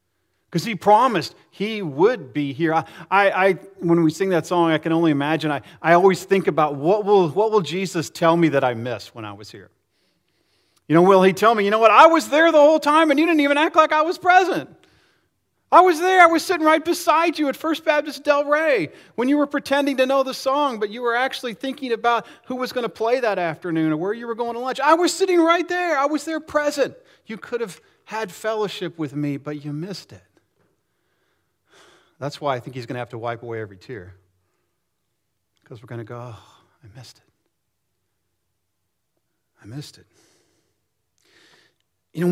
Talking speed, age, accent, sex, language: 215 wpm, 40-59, American, male, English